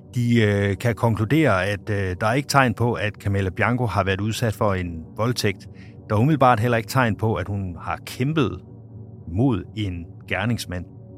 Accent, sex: native, male